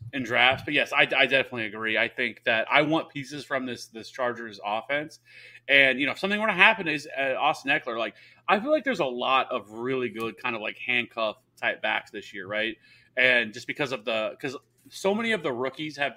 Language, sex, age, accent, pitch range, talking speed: English, male, 30-49, American, 115-145 Hz, 230 wpm